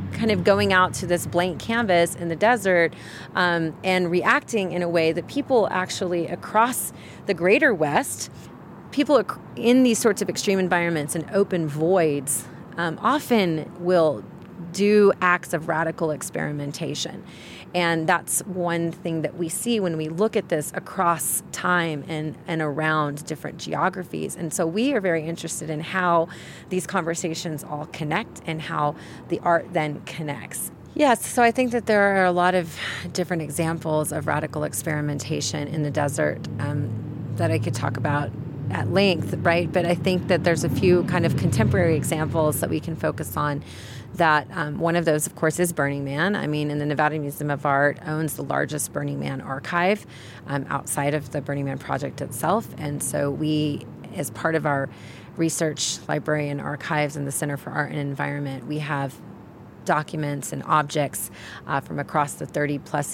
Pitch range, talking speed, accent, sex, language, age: 150-180 Hz, 175 wpm, American, female, English, 30-49